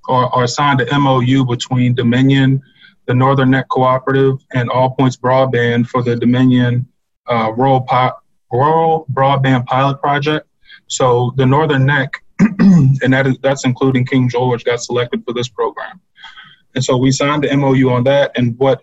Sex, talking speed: male, 160 wpm